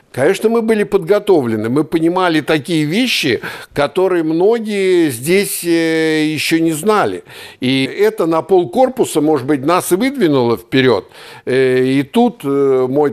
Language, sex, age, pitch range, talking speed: Russian, male, 60-79, 130-175 Hz, 130 wpm